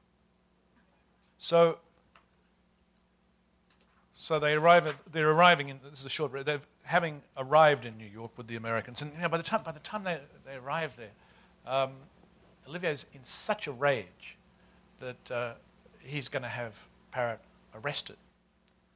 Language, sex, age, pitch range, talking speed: English, male, 50-69, 120-155 Hz, 150 wpm